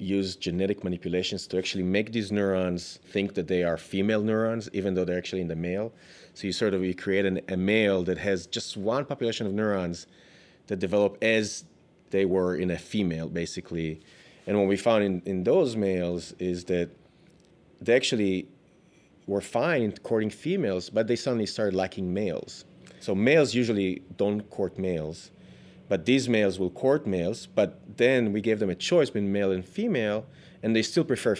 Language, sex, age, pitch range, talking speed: English, male, 30-49, 90-110 Hz, 180 wpm